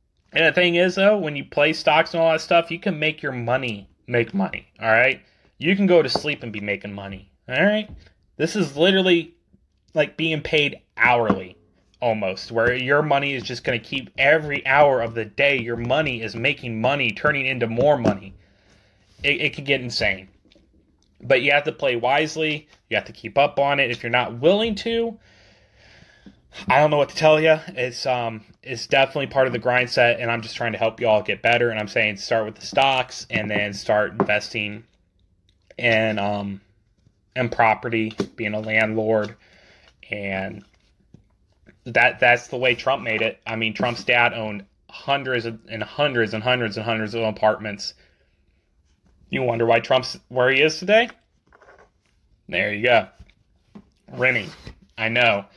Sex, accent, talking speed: male, American, 180 wpm